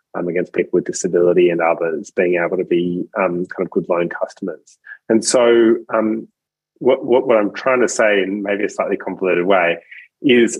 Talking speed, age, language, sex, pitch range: 195 wpm, 30-49, English, male, 95-125 Hz